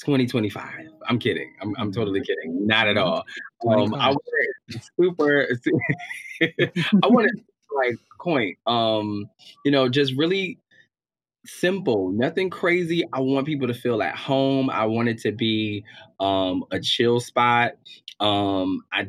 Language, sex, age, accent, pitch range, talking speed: English, male, 20-39, American, 95-125 Hz, 145 wpm